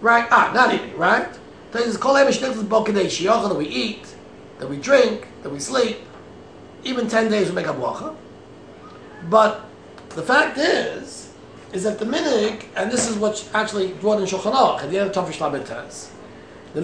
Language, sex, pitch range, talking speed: English, male, 180-235 Hz, 155 wpm